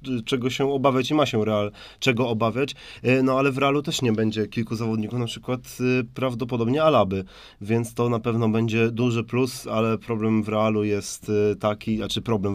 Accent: native